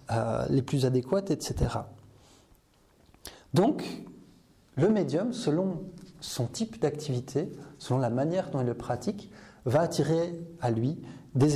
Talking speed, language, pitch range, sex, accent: 120 wpm, French, 120-160 Hz, male, French